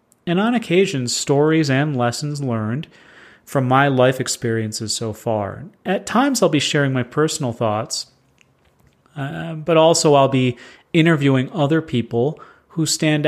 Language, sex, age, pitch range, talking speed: English, male, 30-49, 120-150 Hz, 140 wpm